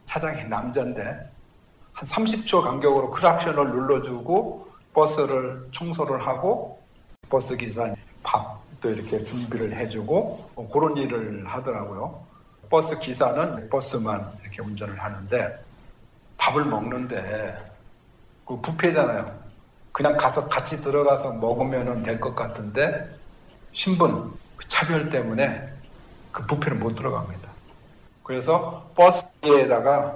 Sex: male